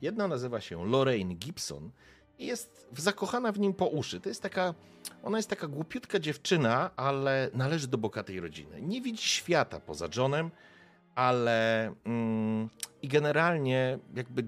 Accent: native